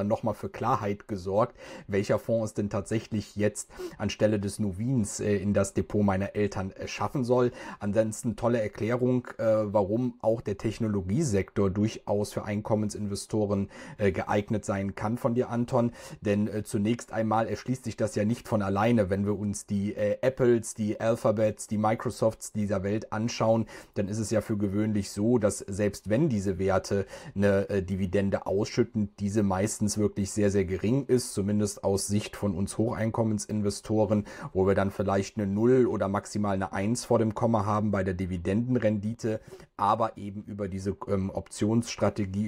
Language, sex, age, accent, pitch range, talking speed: German, male, 40-59, German, 100-110 Hz, 155 wpm